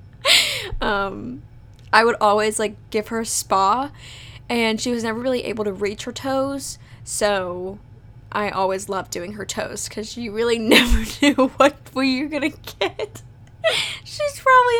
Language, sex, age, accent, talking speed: English, female, 10-29, American, 160 wpm